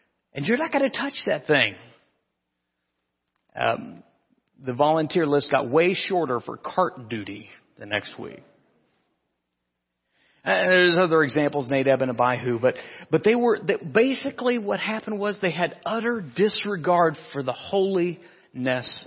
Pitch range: 115-175 Hz